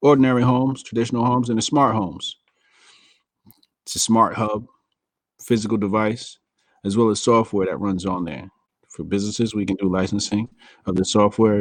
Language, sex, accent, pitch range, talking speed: English, male, American, 95-115 Hz, 160 wpm